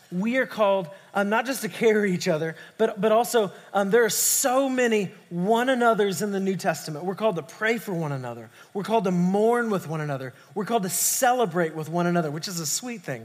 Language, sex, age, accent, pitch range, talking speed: English, male, 30-49, American, 175-230 Hz, 225 wpm